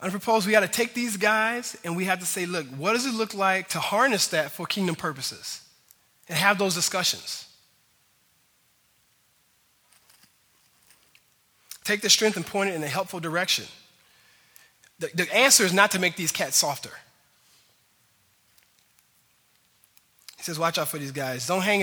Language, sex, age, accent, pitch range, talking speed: English, male, 20-39, American, 145-190 Hz, 160 wpm